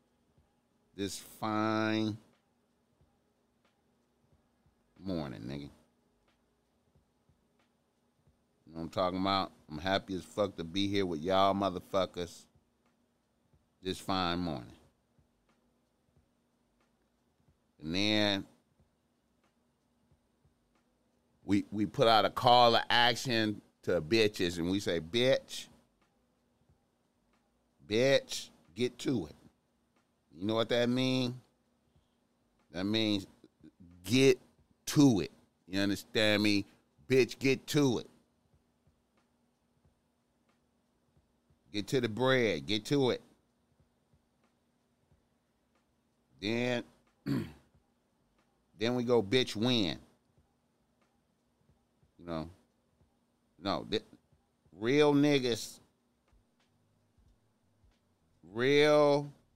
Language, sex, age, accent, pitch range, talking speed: English, male, 40-59, American, 90-120 Hz, 80 wpm